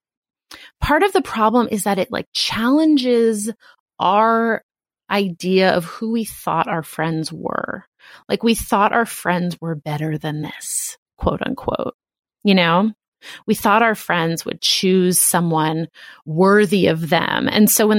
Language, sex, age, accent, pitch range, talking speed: English, female, 30-49, American, 185-255 Hz, 145 wpm